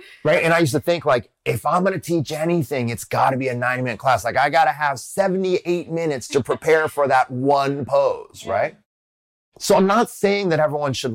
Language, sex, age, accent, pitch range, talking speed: English, male, 30-49, American, 110-160 Hz, 225 wpm